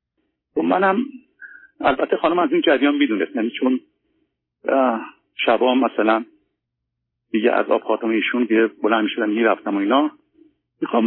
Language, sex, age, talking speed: Persian, male, 50-69, 125 wpm